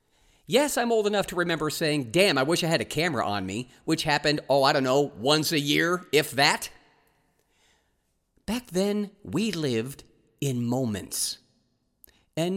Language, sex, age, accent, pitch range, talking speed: English, male, 50-69, American, 130-185 Hz, 160 wpm